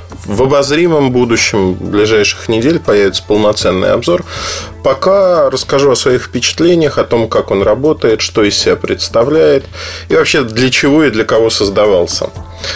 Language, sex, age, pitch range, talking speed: Russian, male, 20-39, 95-135 Hz, 140 wpm